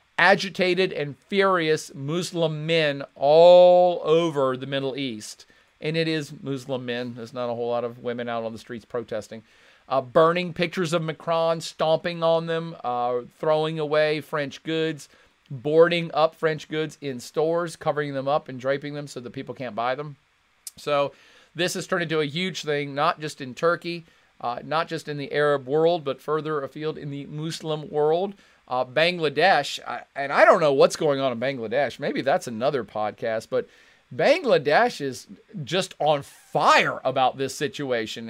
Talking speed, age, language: 170 wpm, 40-59, English